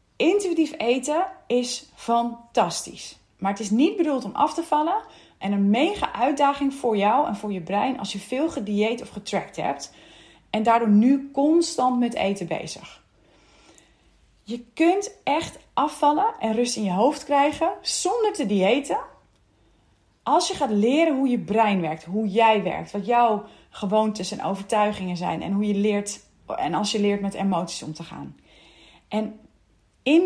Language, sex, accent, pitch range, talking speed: Dutch, female, Dutch, 200-285 Hz, 165 wpm